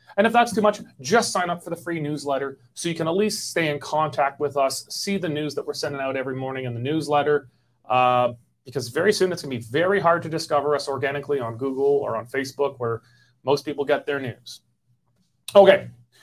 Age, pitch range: 30-49, 125-160 Hz